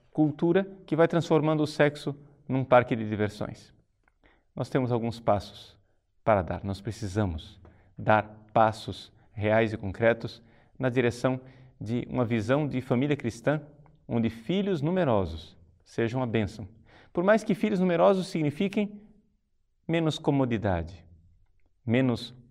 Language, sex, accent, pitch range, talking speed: Portuguese, male, Brazilian, 105-135 Hz, 125 wpm